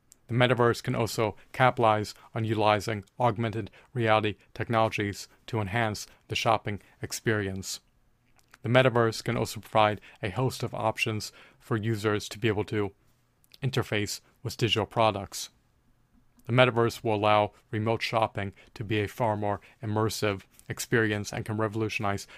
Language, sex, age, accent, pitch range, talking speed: English, male, 40-59, American, 105-120 Hz, 135 wpm